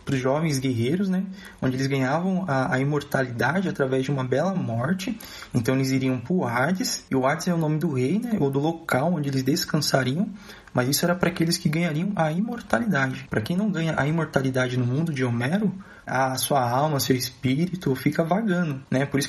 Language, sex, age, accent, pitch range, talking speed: Portuguese, male, 20-39, Brazilian, 130-175 Hz, 205 wpm